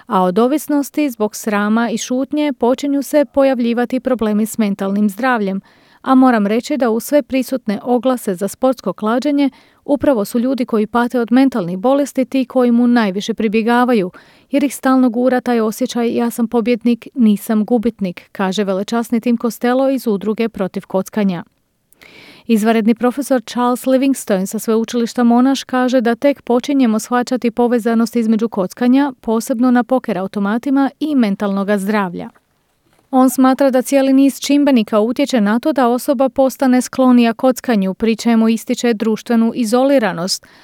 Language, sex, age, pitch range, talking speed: English, female, 40-59, 225-260 Hz, 145 wpm